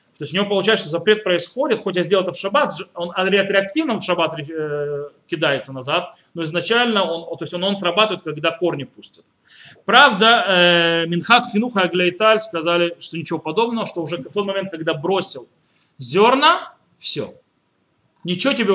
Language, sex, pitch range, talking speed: Russian, male, 160-205 Hz, 165 wpm